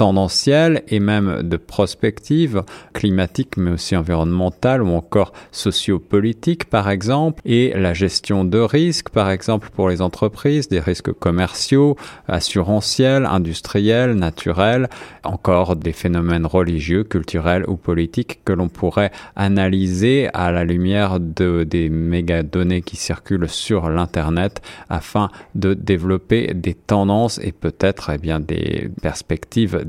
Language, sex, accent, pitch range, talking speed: French, male, French, 90-110 Hz, 120 wpm